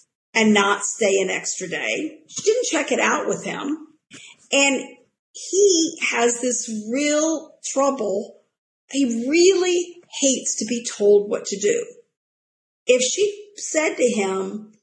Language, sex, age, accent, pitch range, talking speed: English, female, 50-69, American, 220-290 Hz, 135 wpm